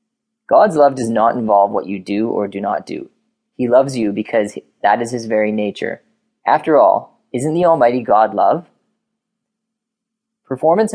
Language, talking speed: English, 160 wpm